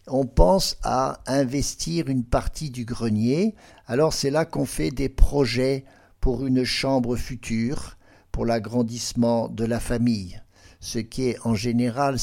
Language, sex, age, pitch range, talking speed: French, male, 60-79, 115-140 Hz, 140 wpm